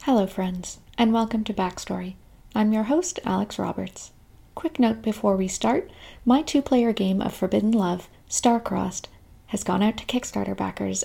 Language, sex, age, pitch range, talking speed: English, female, 40-59, 180-225 Hz, 155 wpm